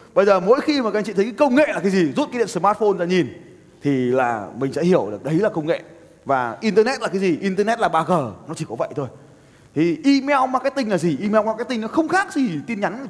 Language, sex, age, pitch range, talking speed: Vietnamese, male, 20-39, 140-215 Hz, 260 wpm